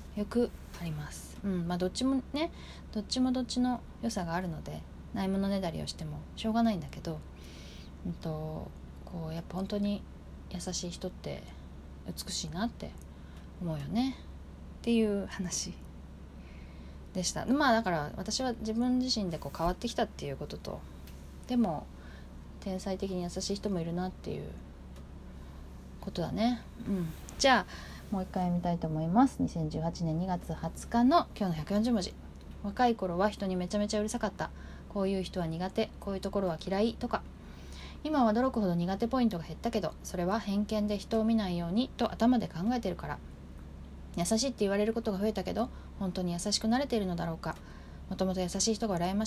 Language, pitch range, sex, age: Japanese, 155-225 Hz, female, 20-39